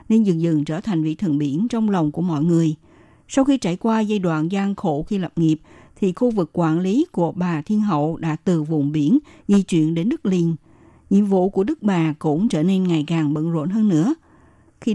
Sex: female